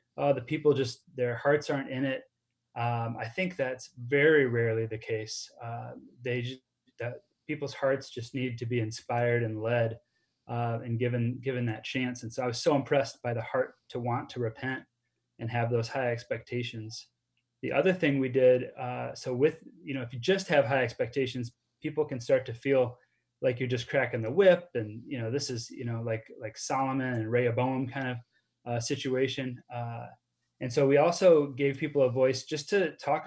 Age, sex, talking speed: 20-39, male, 195 wpm